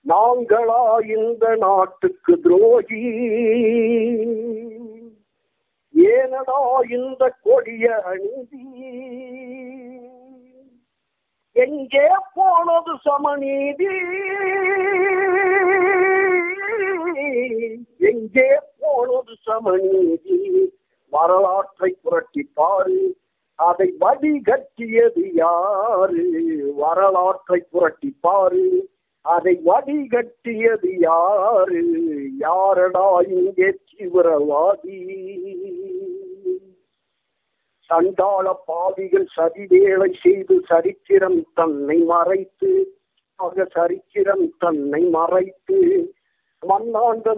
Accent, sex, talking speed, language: native, male, 45 wpm, Tamil